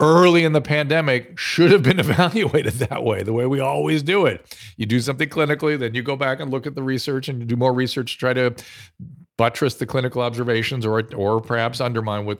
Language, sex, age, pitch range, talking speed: English, male, 40-59, 105-135 Hz, 220 wpm